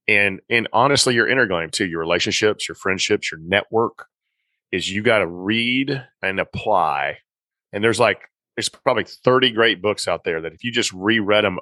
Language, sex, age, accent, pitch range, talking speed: English, male, 40-59, American, 90-110 Hz, 185 wpm